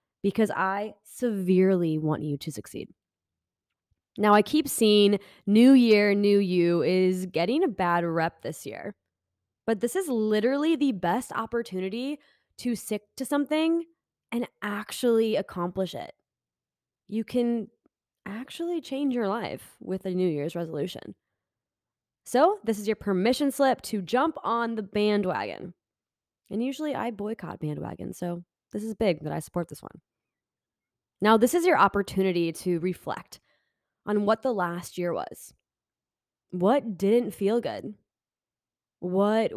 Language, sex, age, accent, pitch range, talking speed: English, female, 20-39, American, 175-230 Hz, 140 wpm